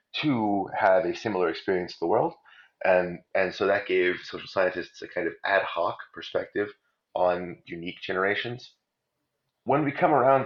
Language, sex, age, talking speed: English, male, 30-49, 160 wpm